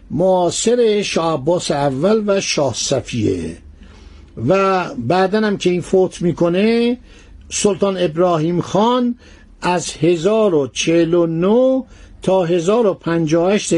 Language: Persian